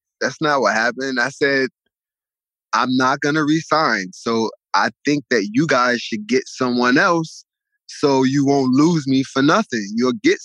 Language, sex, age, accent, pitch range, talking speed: English, male, 20-39, American, 120-175 Hz, 170 wpm